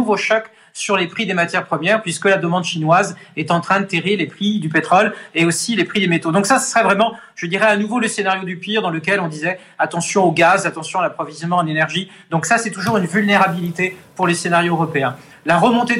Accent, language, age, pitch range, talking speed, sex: French, French, 40-59, 170-205 Hz, 235 wpm, male